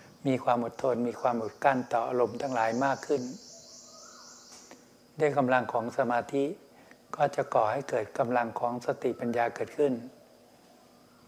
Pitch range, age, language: 120-135 Hz, 60-79, Thai